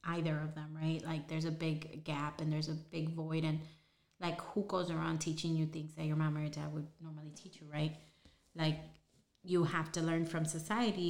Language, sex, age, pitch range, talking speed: English, female, 30-49, 155-175 Hz, 215 wpm